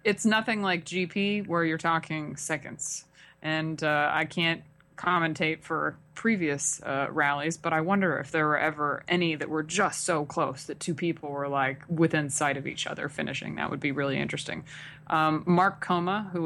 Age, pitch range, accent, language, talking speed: 20-39, 150-180 Hz, American, English, 180 wpm